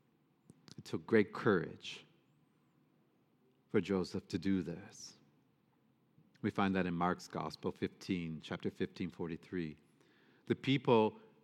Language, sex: English, male